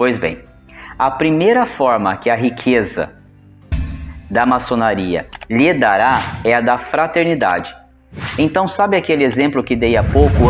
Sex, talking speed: male, 135 wpm